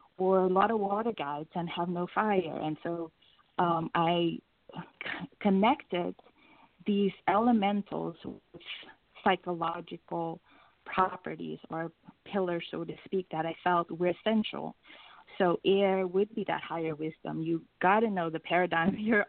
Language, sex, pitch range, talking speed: English, female, 165-210 Hz, 140 wpm